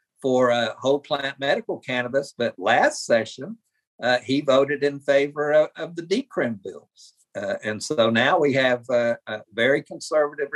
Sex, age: male, 50-69